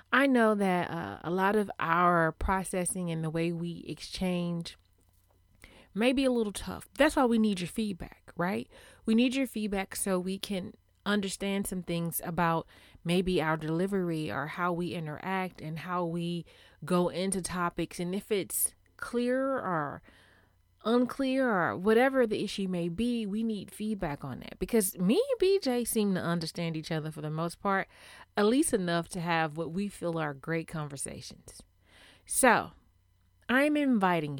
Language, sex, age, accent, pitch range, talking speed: English, female, 30-49, American, 150-210 Hz, 165 wpm